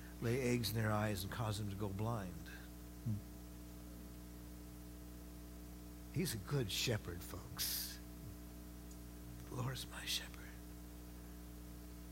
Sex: male